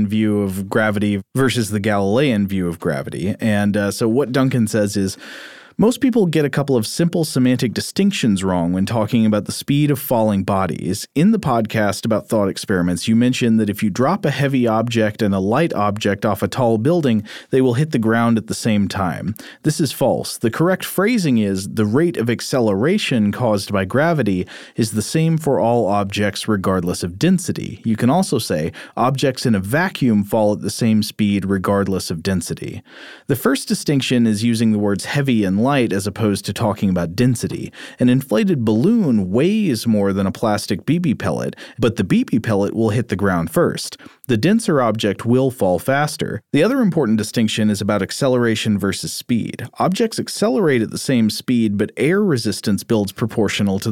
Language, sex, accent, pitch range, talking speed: English, male, American, 100-130 Hz, 185 wpm